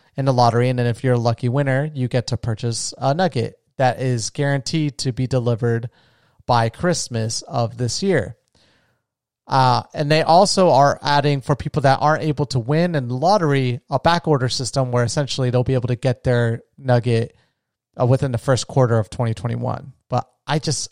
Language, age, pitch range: English, 30-49, 120-150 Hz